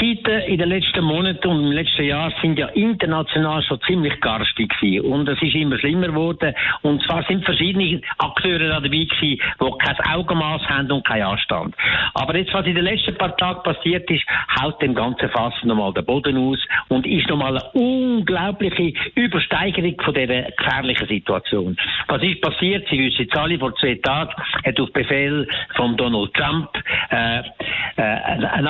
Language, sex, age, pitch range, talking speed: German, male, 60-79, 145-190 Hz, 170 wpm